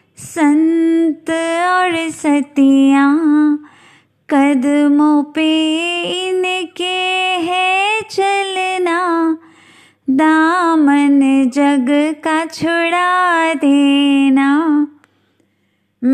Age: 20-39